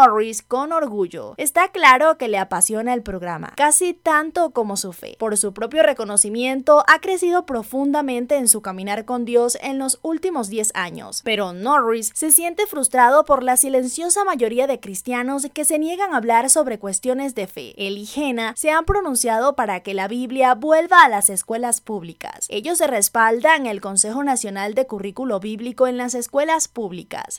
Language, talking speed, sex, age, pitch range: Spanish, 175 wpm, female, 20-39, 215-300 Hz